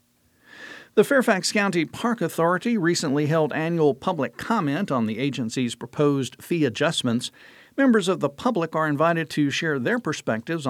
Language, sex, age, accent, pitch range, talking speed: English, male, 50-69, American, 130-185 Hz, 145 wpm